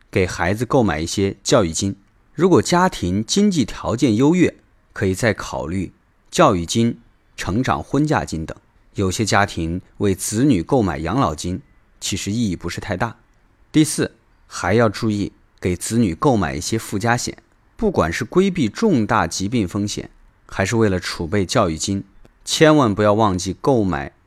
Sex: male